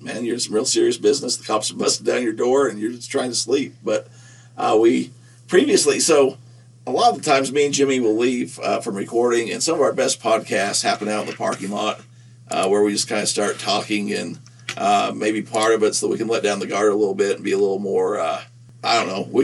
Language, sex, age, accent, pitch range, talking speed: English, male, 50-69, American, 110-140 Hz, 260 wpm